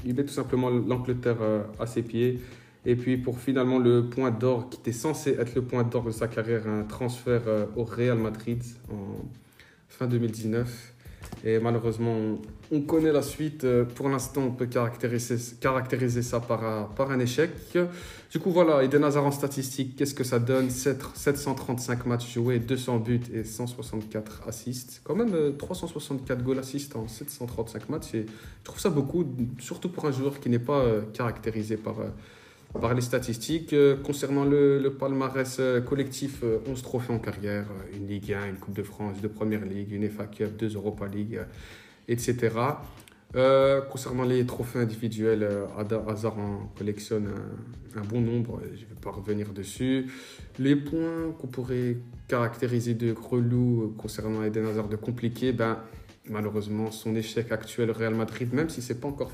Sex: male